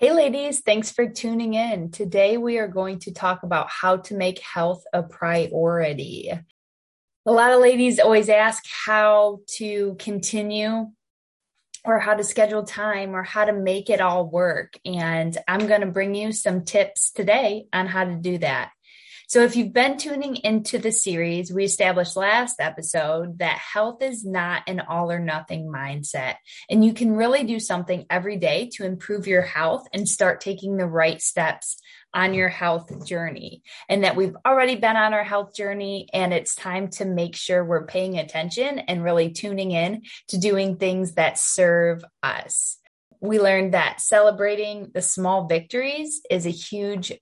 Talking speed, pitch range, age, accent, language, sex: 170 wpm, 180-215 Hz, 20-39, American, English, female